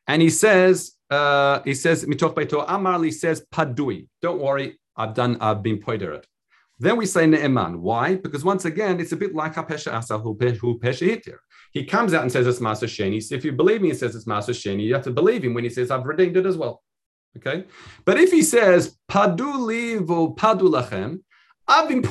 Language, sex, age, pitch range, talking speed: English, male, 40-59, 120-185 Hz, 170 wpm